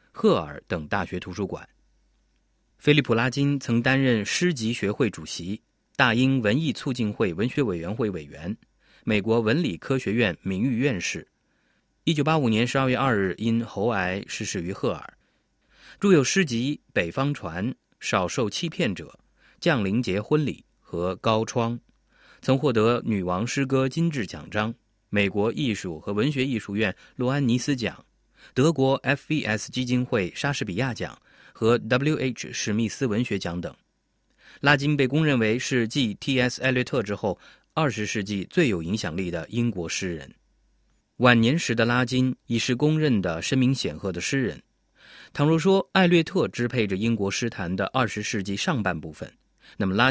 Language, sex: Chinese, male